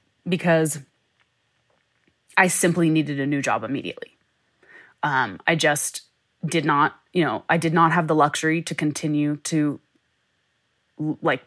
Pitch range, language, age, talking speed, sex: 155-180 Hz, English, 20-39, 130 wpm, female